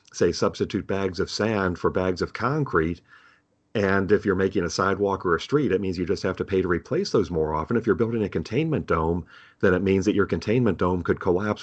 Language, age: English, 40-59